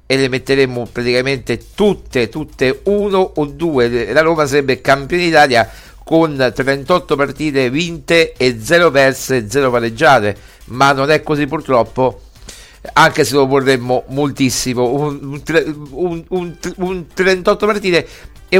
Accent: native